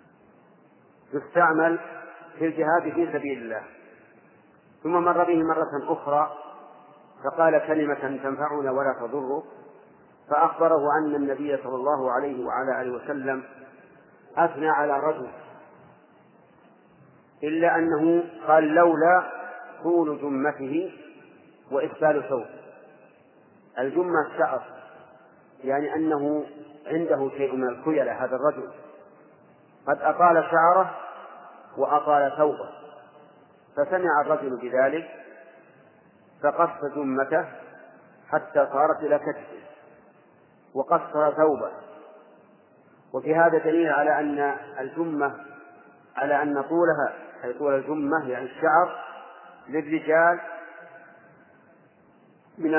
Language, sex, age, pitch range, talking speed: Arabic, male, 50-69, 145-165 Hz, 90 wpm